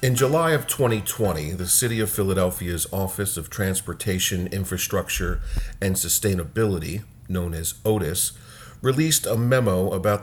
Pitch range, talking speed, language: 95-120 Hz, 125 wpm, English